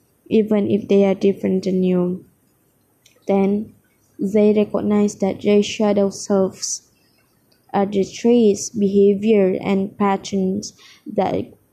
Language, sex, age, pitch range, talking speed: English, female, 20-39, 195-210 Hz, 105 wpm